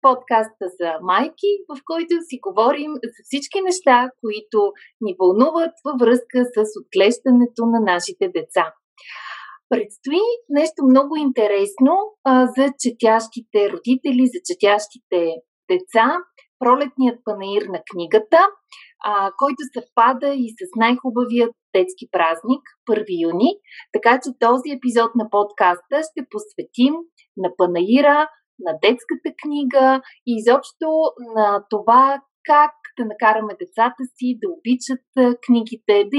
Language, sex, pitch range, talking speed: Bulgarian, female, 220-300 Hz, 125 wpm